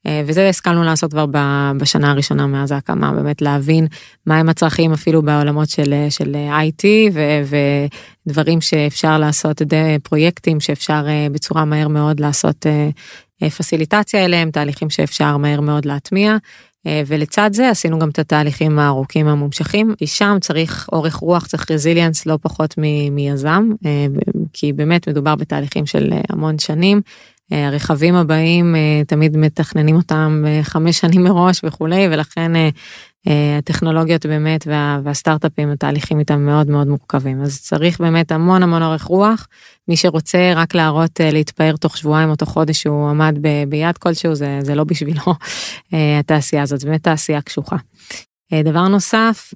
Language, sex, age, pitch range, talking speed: English, female, 20-39, 150-170 Hz, 155 wpm